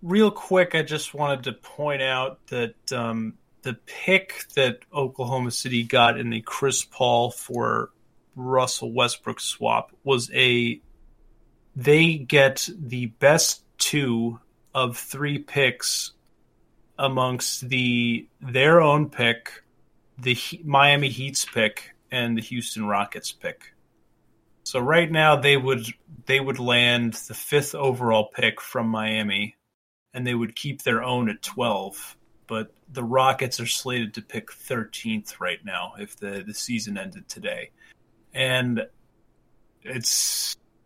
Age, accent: 30-49, American